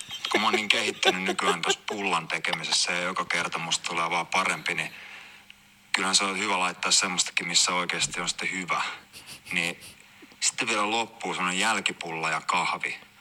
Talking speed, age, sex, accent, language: 155 wpm, 30-49, male, native, Finnish